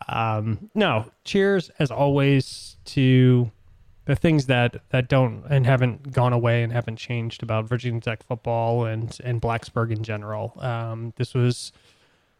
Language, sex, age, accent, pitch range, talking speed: English, male, 20-39, American, 115-135 Hz, 150 wpm